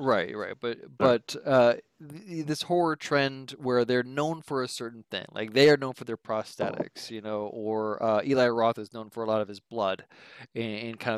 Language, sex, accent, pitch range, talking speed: English, male, American, 110-140 Hz, 210 wpm